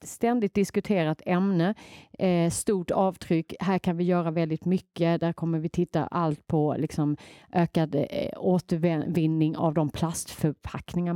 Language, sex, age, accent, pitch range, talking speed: Swedish, female, 30-49, native, 155-180 Hz, 135 wpm